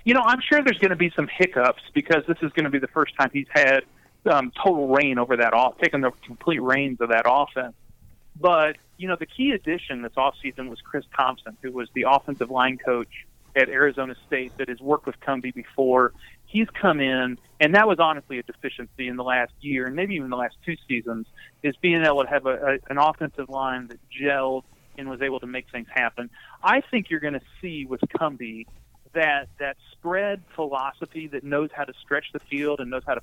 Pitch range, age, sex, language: 125-150 Hz, 30-49, male, English